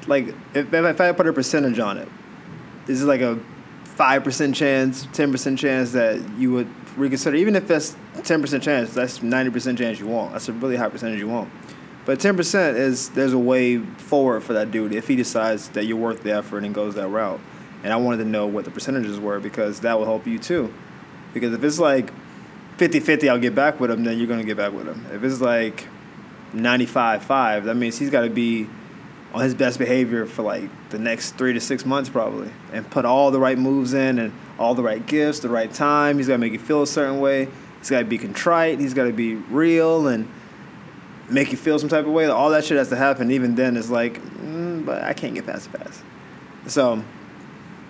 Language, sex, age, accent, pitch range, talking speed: English, male, 20-39, American, 115-150 Hz, 220 wpm